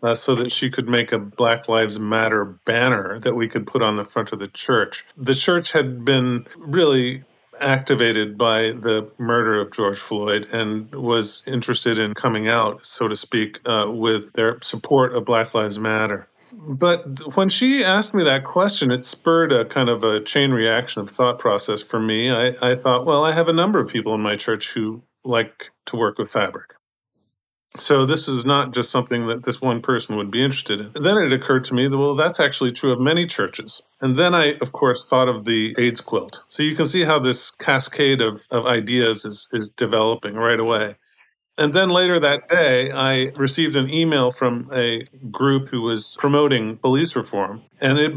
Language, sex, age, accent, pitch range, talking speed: English, male, 40-59, American, 115-135 Hz, 200 wpm